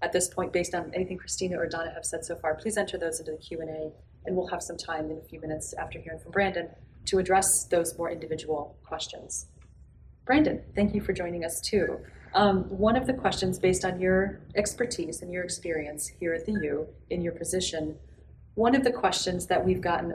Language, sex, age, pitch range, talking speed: English, female, 30-49, 165-190 Hz, 210 wpm